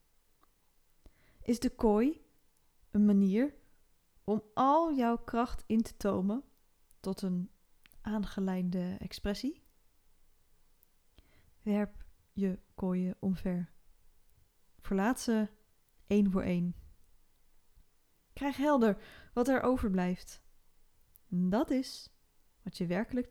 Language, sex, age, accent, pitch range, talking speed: Dutch, female, 20-39, Dutch, 175-230 Hz, 90 wpm